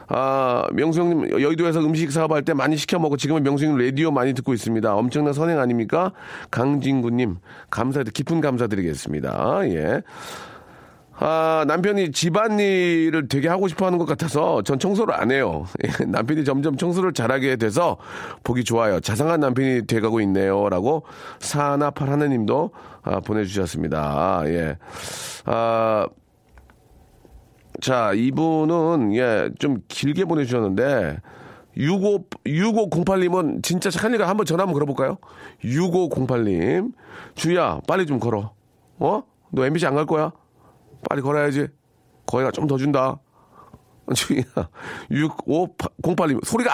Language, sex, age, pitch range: Korean, male, 40-59, 125-170 Hz